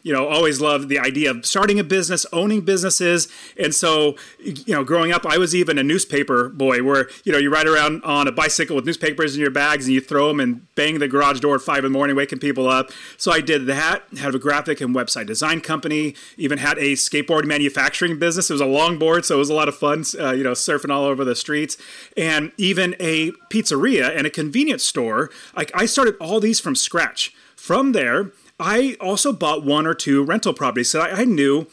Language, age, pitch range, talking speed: English, 30-49, 140-185 Hz, 225 wpm